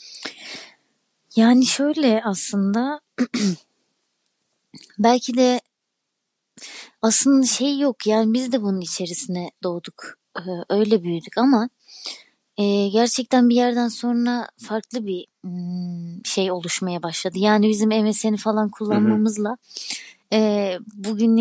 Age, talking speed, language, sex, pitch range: 30-49, 90 wpm, Turkish, female, 200-245 Hz